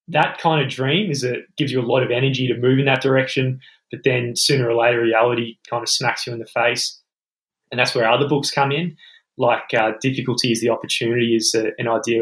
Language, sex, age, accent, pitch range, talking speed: English, male, 20-39, Australian, 115-135 Hz, 230 wpm